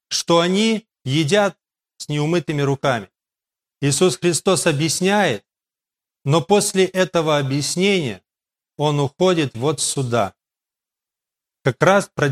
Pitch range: 140-185 Hz